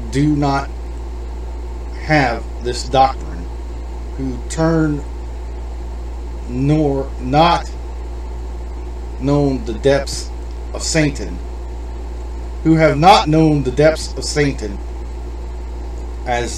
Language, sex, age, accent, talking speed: English, male, 40-59, American, 85 wpm